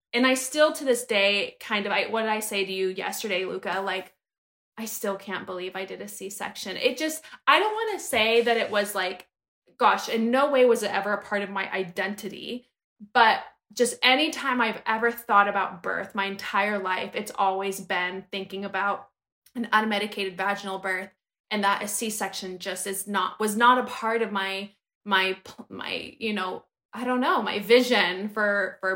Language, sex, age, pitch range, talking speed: English, female, 20-39, 195-245 Hz, 195 wpm